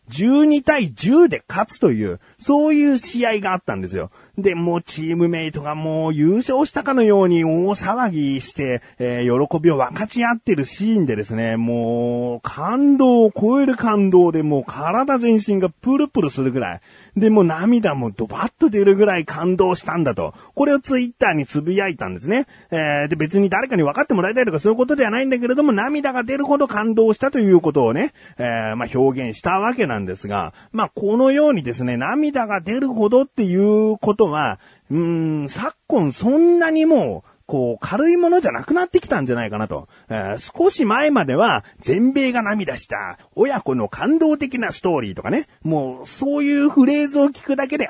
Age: 40-59